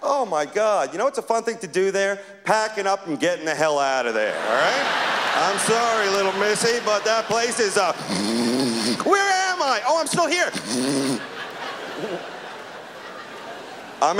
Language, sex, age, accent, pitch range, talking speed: English, male, 40-59, American, 180-275 Hz, 170 wpm